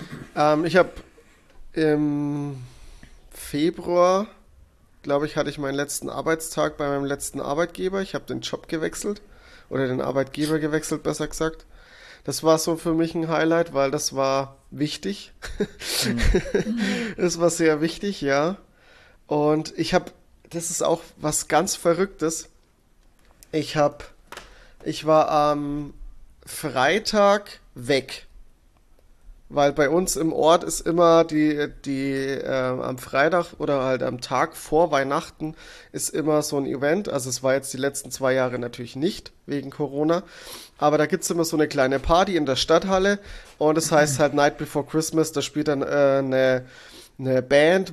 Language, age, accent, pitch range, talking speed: German, 30-49, German, 135-165 Hz, 150 wpm